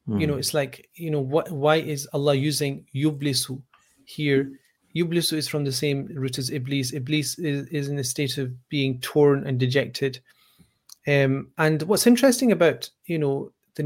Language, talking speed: English, 175 wpm